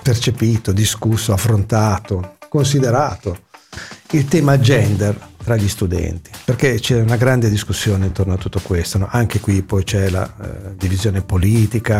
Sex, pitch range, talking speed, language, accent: male, 95-120 Hz, 140 wpm, Italian, native